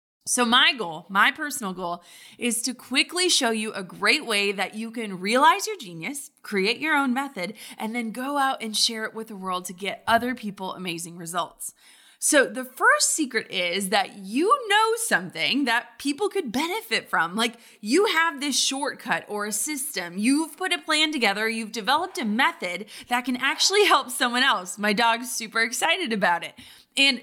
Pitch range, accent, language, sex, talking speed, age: 210-290 Hz, American, English, female, 185 wpm, 20-39